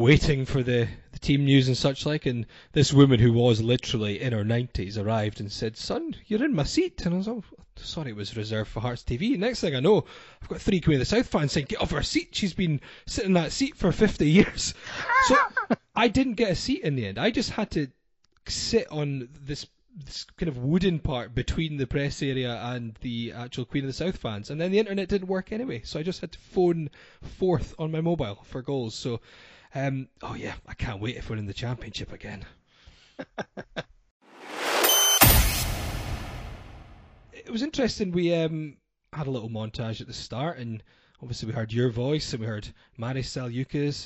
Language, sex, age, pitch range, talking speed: English, male, 20-39, 120-165 Hz, 205 wpm